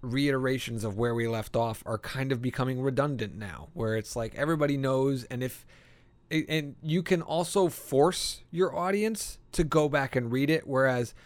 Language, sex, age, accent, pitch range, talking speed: English, male, 30-49, American, 115-150 Hz, 175 wpm